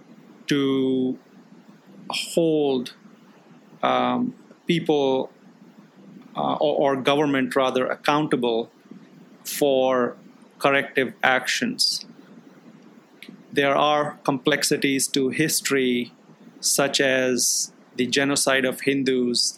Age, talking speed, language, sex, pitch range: 30-49, 75 wpm, English, male, 125-150 Hz